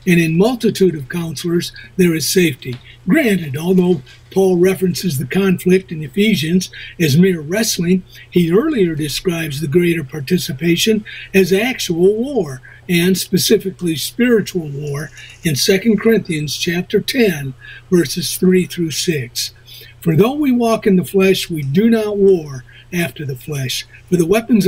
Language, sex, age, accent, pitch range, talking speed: English, male, 50-69, American, 155-195 Hz, 140 wpm